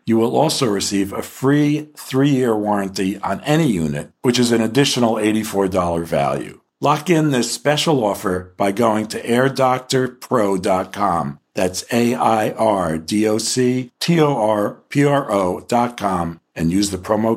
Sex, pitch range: male, 100-125 Hz